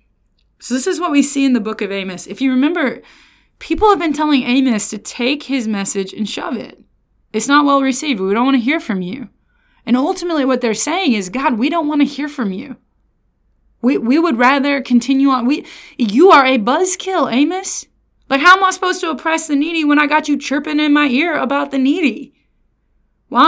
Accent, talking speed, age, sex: American, 215 wpm, 20-39, female